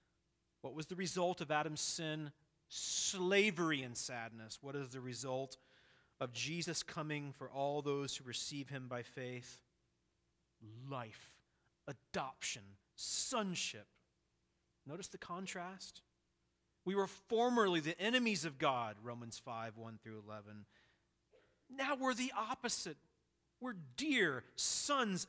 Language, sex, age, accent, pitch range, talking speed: English, male, 40-59, American, 120-200 Hz, 115 wpm